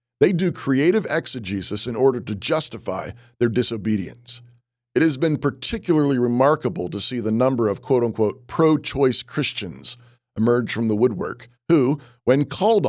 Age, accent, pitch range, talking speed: 40-59, American, 120-155 Hz, 140 wpm